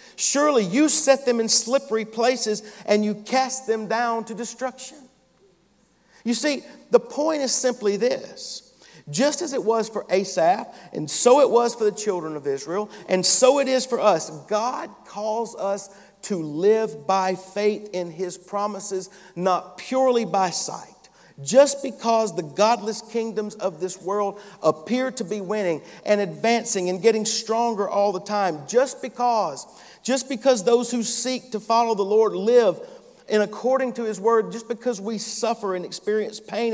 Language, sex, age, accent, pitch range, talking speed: English, male, 50-69, American, 195-240 Hz, 165 wpm